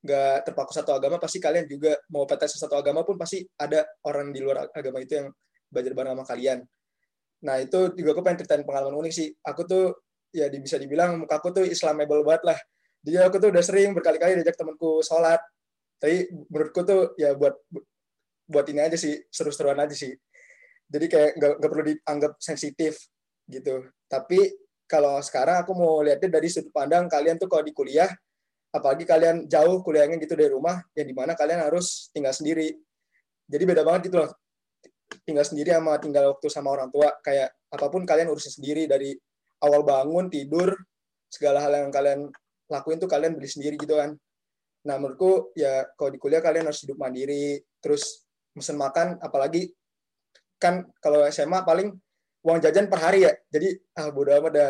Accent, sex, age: Indonesian, male, 20-39